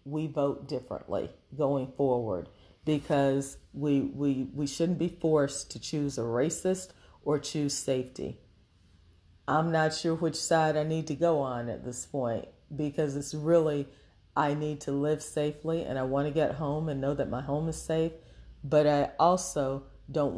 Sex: female